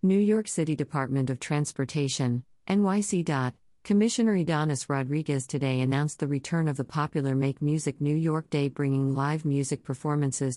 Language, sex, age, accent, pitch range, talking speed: English, female, 50-69, American, 135-155 Hz, 150 wpm